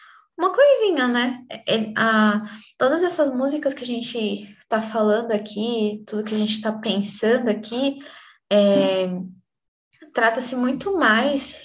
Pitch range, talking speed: 210-265 Hz, 130 wpm